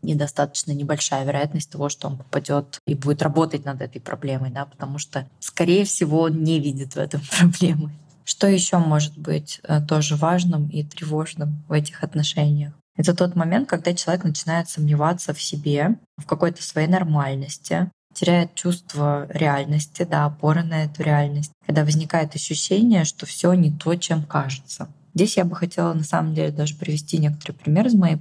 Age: 20-39